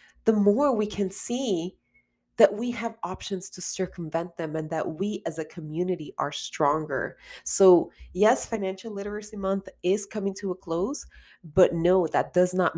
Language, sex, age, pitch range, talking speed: English, female, 30-49, 160-220 Hz, 165 wpm